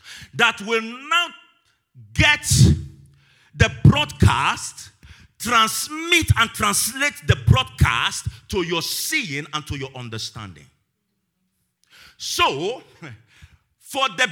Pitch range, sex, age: 185-285 Hz, male, 50-69